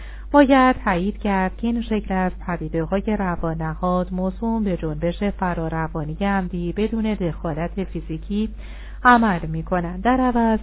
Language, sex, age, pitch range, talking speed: Persian, female, 40-59, 170-210 Hz, 115 wpm